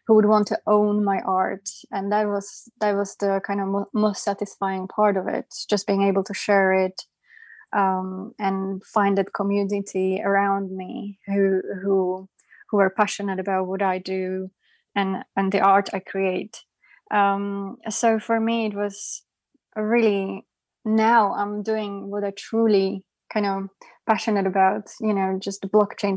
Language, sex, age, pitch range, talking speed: English, female, 20-39, 195-220 Hz, 165 wpm